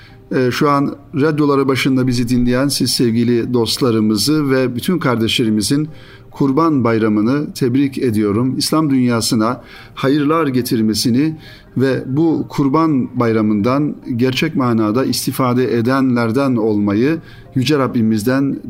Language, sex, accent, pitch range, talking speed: Turkish, male, native, 115-140 Hz, 100 wpm